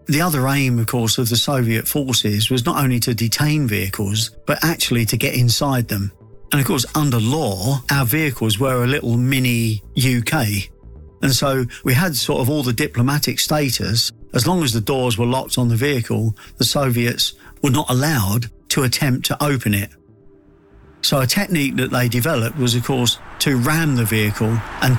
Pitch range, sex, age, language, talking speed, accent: 115-140 Hz, male, 50-69, English, 180 wpm, British